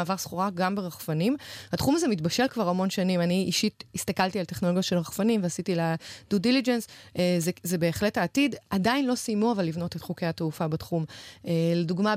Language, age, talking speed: Hebrew, 20-39, 175 wpm